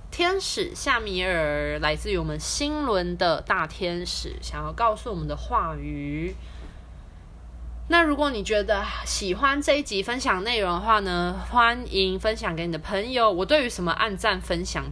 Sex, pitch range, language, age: female, 155-205 Hz, Chinese, 20-39